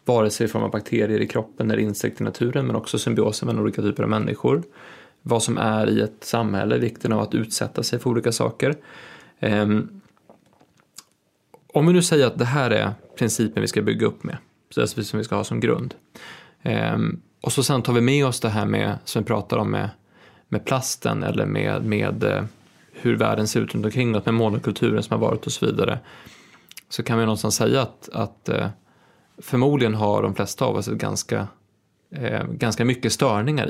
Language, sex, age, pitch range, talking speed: Swedish, male, 20-39, 110-130 Hz, 200 wpm